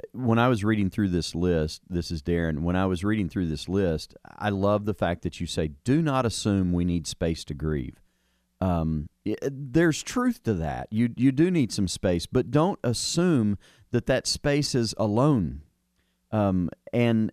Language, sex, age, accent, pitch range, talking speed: English, male, 40-59, American, 85-110 Hz, 185 wpm